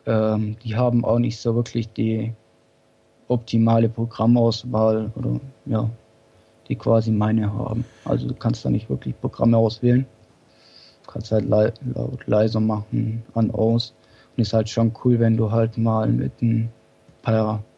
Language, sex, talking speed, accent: German, male, 150 wpm, German